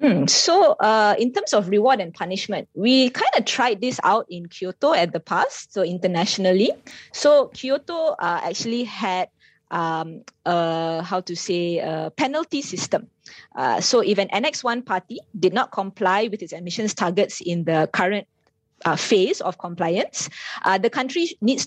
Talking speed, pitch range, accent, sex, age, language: 165 wpm, 175-215 Hz, Malaysian, female, 20-39, English